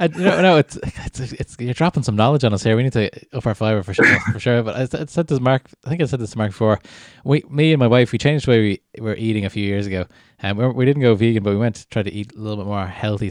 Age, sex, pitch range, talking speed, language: 20-39, male, 100-125 Hz, 325 wpm, English